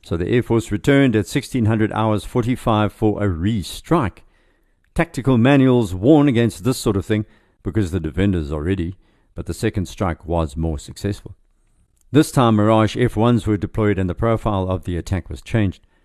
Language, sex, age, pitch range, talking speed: English, male, 50-69, 95-120 Hz, 170 wpm